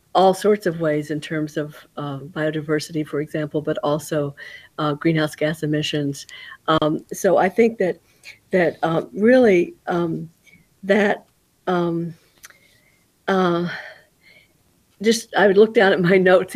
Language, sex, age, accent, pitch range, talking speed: English, female, 50-69, American, 160-200 Hz, 135 wpm